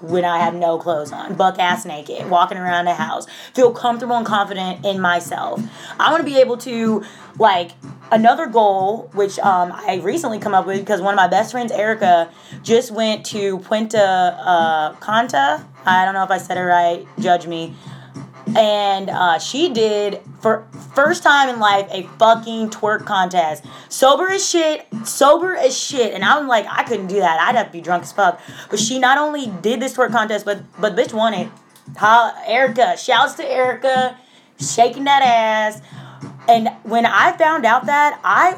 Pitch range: 195-270 Hz